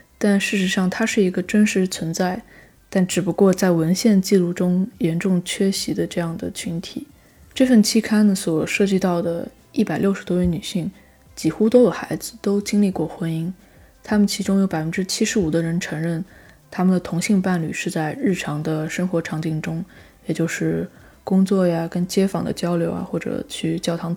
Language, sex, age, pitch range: Chinese, female, 20-39, 175-205 Hz